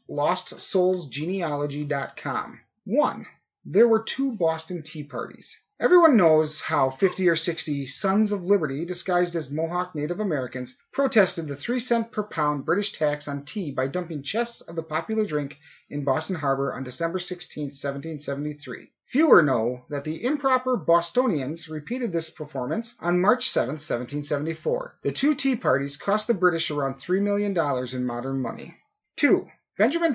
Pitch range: 145-215 Hz